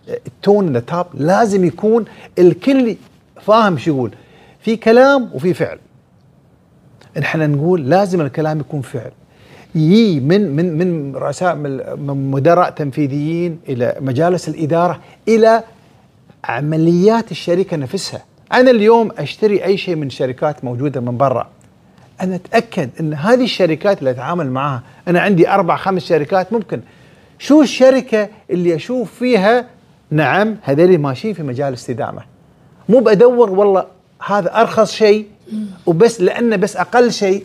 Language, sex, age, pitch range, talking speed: Arabic, male, 40-59, 155-220 Hz, 125 wpm